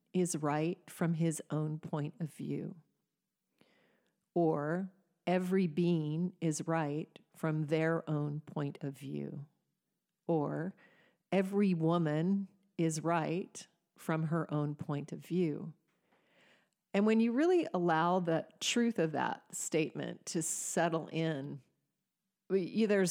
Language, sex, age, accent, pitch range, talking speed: English, female, 40-59, American, 155-185 Hz, 115 wpm